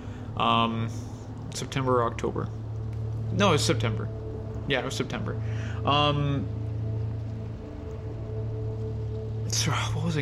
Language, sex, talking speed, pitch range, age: English, male, 95 wpm, 110-130 Hz, 20-39